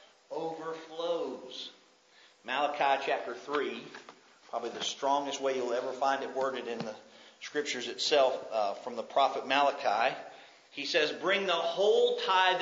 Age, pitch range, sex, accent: 40-59, 135-215 Hz, male, American